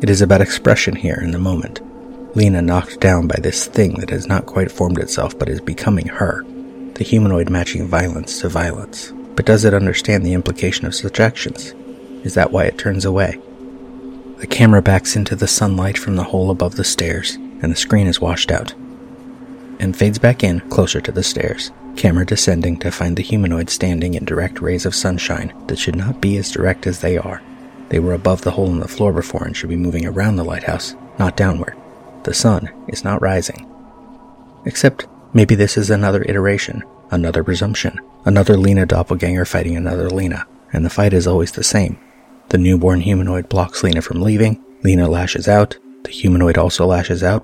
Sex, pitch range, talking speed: male, 90-110 Hz, 190 wpm